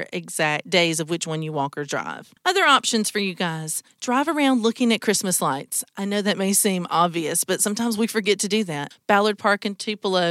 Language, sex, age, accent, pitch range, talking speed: English, female, 40-59, American, 175-235 Hz, 215 wpm